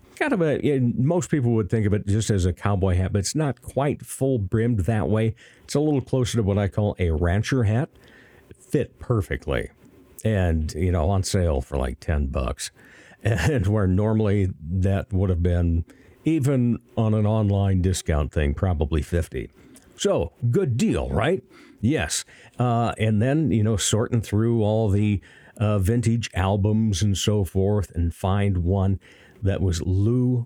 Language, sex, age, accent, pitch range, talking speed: English, male, 50-69, American, 90-115 Hz, 170 wpm